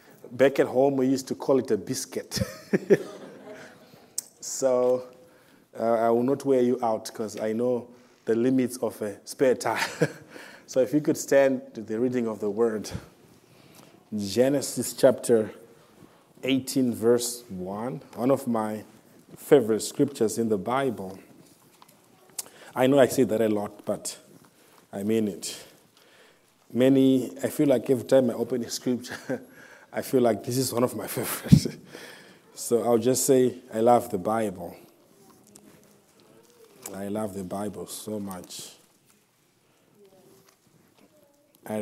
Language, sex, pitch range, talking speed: English, male, 105-130 Hz, 140 wpm